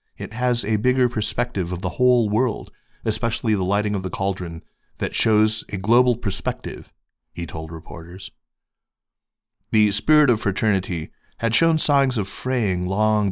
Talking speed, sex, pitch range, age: 150 wpm, male, 90-110 Hz, 30-49